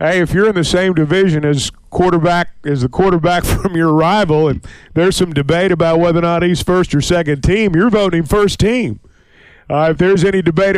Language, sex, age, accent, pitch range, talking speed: English, male, 50-69, American, 150-195 Hz, 205 wpm